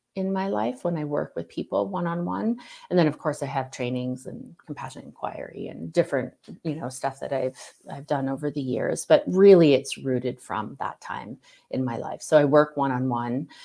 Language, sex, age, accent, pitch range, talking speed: English, female, 30-49, American, 135-170 Hz, 200 wpm